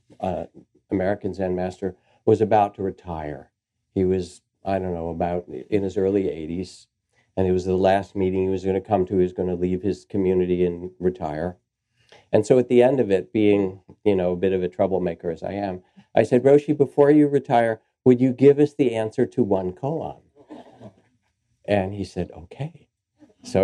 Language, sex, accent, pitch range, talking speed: English, male, American, 90-115 Hz, 195 wpm